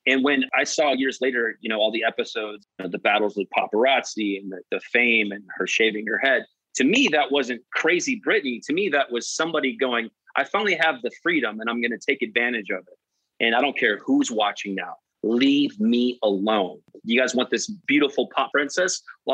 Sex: male